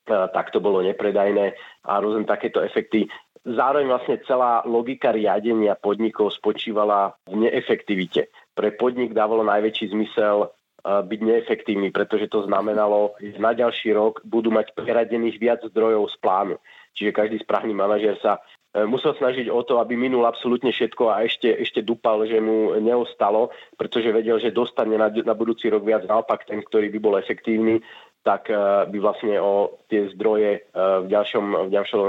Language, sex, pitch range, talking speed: Slovak, male, 105-115 Hz, 155 wpm